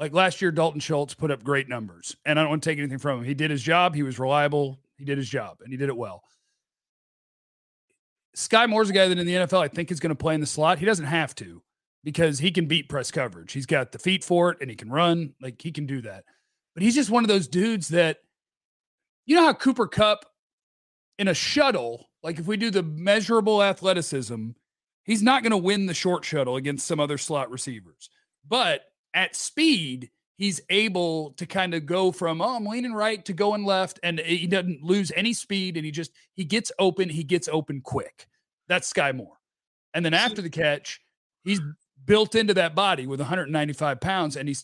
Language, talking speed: English, 220 wpm